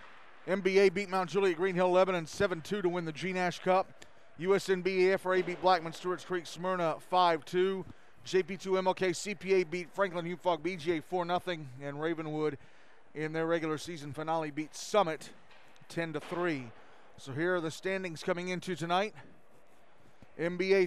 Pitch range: 165-190 Hz